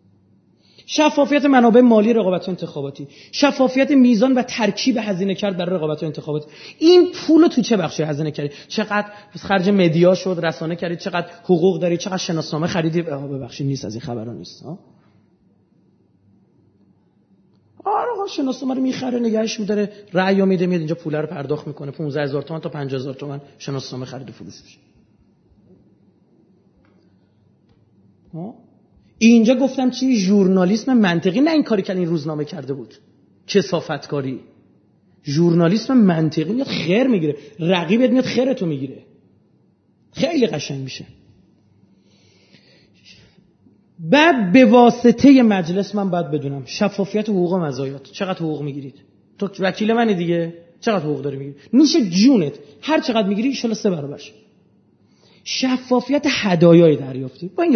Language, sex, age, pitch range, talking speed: Persian, male, 30-49, 150-235 Hz, 130 wpm